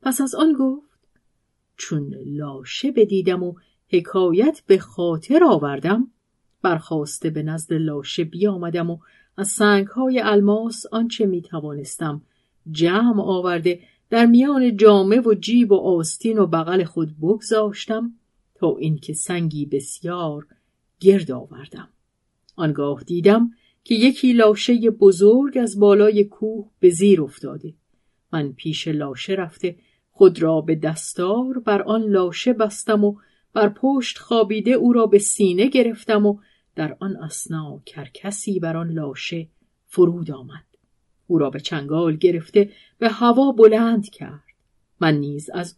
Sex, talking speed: female, 130 wpm